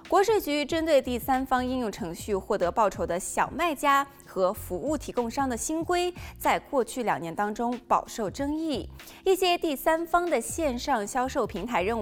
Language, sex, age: Chinese, female, 20-39